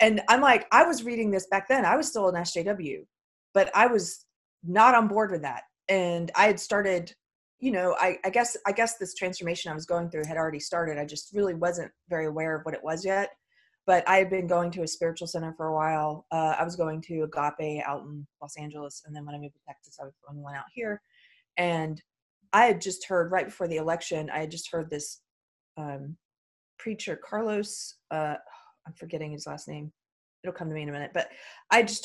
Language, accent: English, American